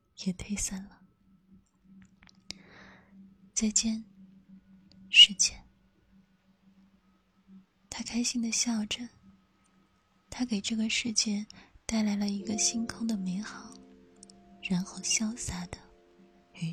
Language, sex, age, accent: Chinese, female, 20-39, native